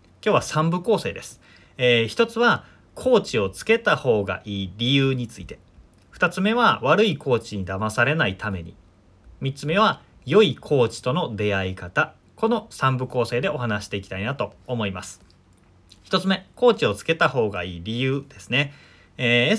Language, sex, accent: Japanese, male, native